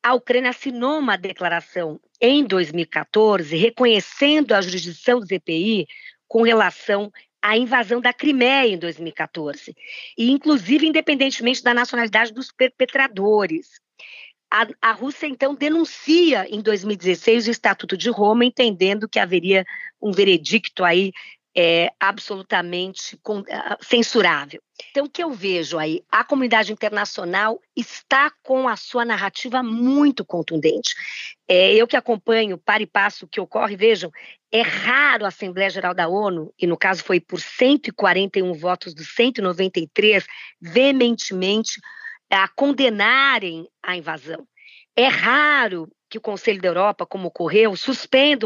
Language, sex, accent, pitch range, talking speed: Portuguese, female, Brazilian, 190-255 Hz, 130 wpm